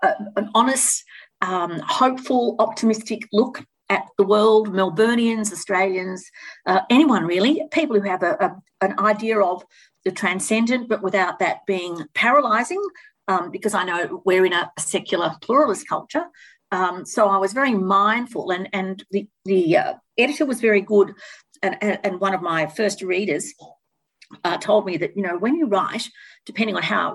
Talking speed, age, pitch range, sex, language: 160 wpm, 50-69, 185-235 Hz, female, English